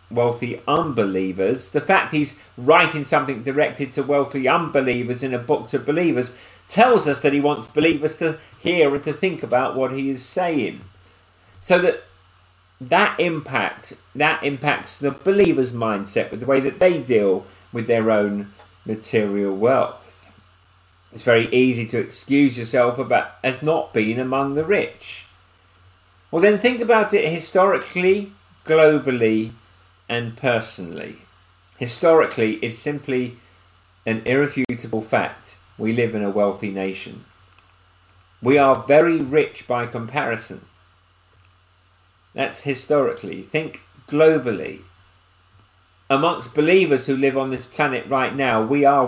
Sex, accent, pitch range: male, British, 95-150 Hz